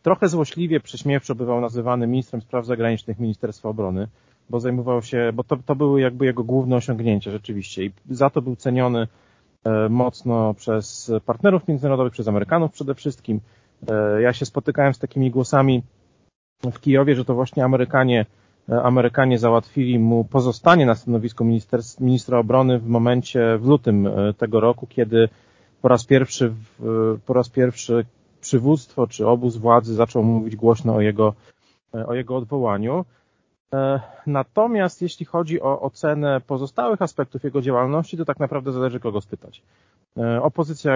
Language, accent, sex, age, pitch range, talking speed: Polish, native, male, 40-59, 115-135 Hz, 140 wpm